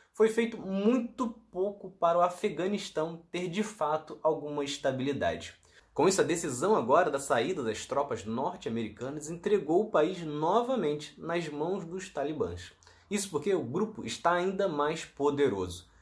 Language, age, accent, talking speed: Portuguese, 20-39, Brazilian, 140 wpm